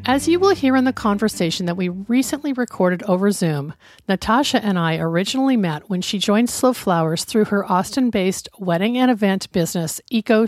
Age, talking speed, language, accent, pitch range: 50-69, 180 wpm, English, American, 170-220 Hz